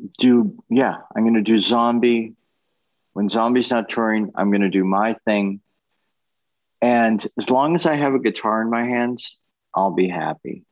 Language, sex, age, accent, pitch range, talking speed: English, male, 40-59, American, 100-130 Hz, 175 wpm